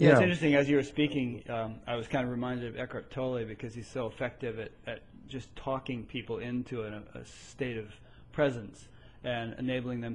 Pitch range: 115-130 Hz